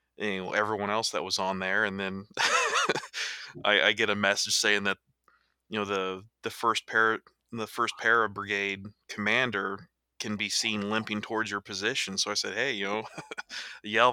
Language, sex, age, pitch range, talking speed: English, male, 20-39, 100-115 Hz, 180 wpm